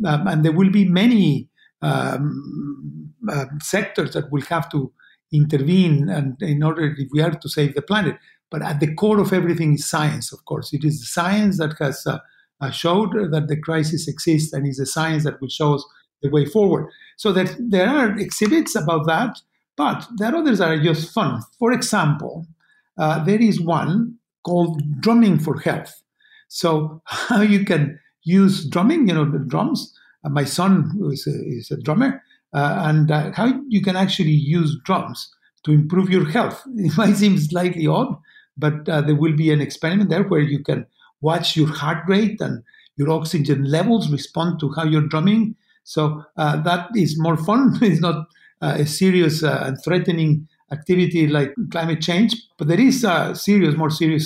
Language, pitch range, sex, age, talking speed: English, 150-195 Hz, male, 50-69, 180 wpm